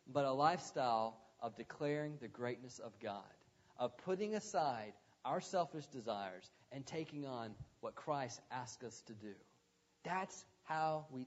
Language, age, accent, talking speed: English, 40-59, American, 145 wpm